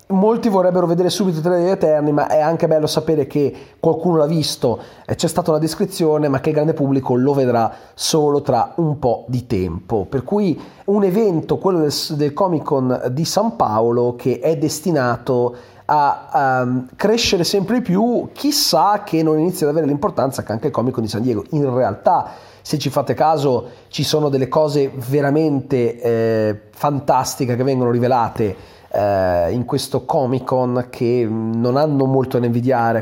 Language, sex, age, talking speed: Italian, male, 30-49, 175 wpm